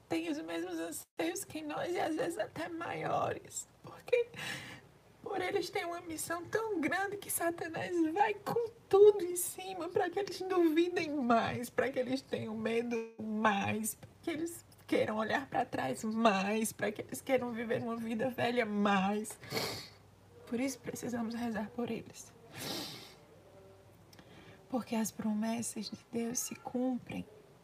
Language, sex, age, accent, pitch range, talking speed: Portuguese, female, 20-39, Brazilian, 200-275 Hz, 145 wpm